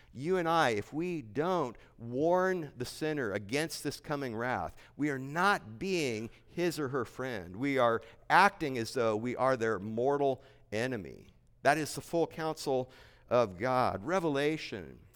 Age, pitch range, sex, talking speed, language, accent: 50-69, 120-160 Hz, male, 155 wpm, English, American